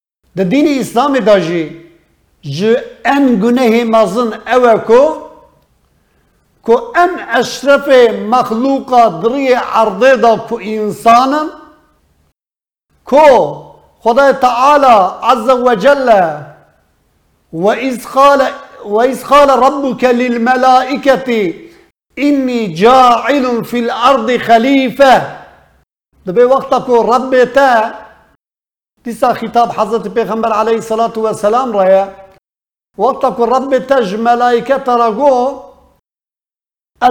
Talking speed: 80 wpm